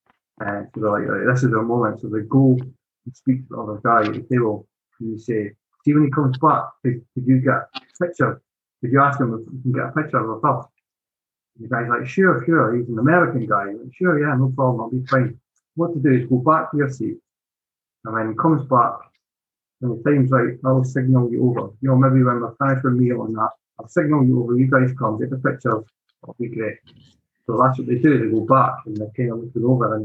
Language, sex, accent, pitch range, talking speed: English, male, British, 120-140 Hz, 260 wpm